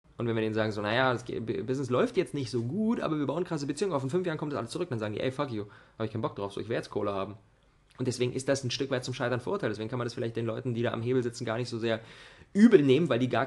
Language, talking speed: German, 330 wpm